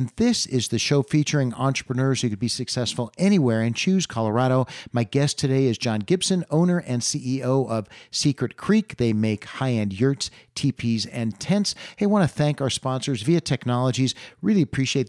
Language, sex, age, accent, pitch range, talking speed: English, male, 40-59, American, 115-150 Hz, 180 wpm